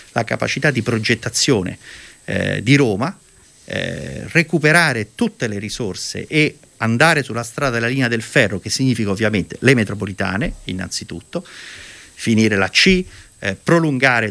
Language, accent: Italian, native